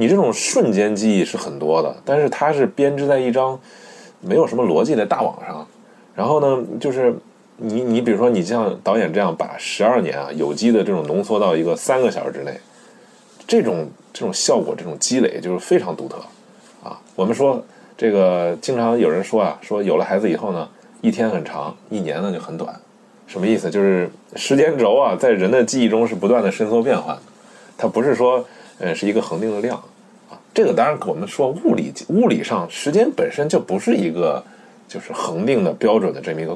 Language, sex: Chinese, male